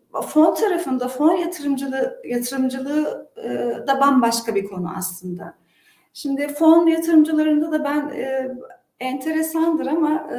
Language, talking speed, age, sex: Turkish, 100 wpm, 40-59, female